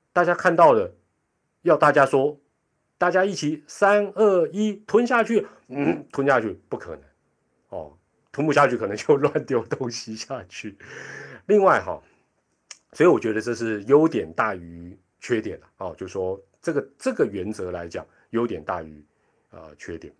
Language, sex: Chinese, male